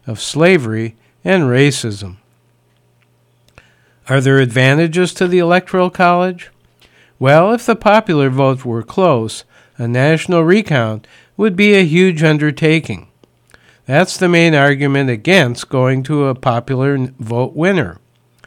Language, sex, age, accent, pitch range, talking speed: English, male, 60-79, American, 115-160 Hz, 120 wpm